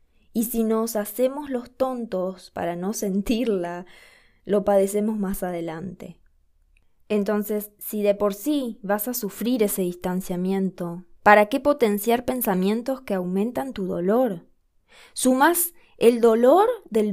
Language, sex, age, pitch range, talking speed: Spanish, female, 20-39, 190-245 Hz, 125 wpm